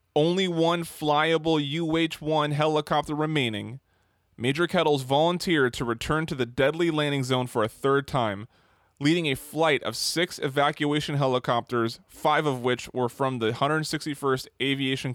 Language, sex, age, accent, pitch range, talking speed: English, male, 20-39, American, 120-155 Hz, 145 wpm